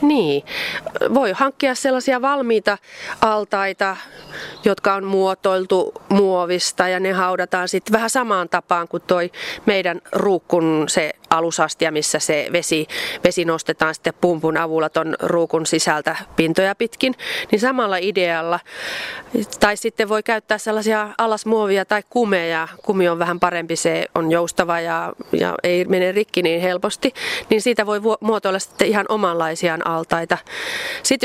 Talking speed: 135 wpm